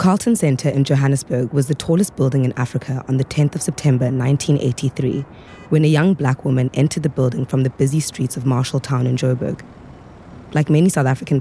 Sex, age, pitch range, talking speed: female, 20-39, 130-150 Hz, 190 wpm